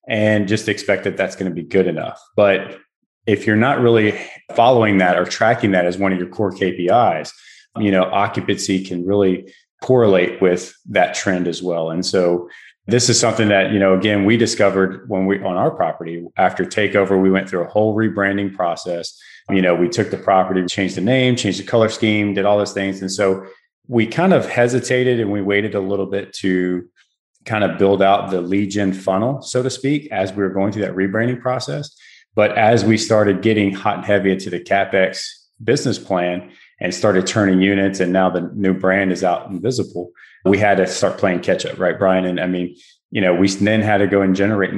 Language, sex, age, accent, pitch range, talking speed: English, male, 30-49, American, 90-105 Hz, 210 wpm